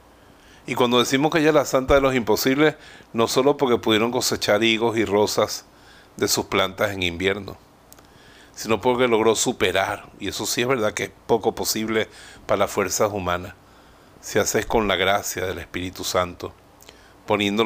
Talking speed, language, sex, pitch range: 170 wpm, Spanish, male, 95-115 Hz